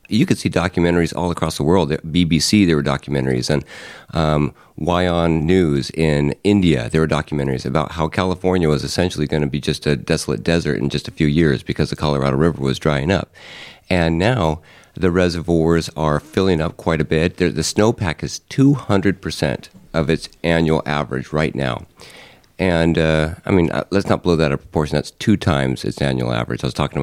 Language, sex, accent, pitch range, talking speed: English, male, American, 75-90 Hz, 190 wpm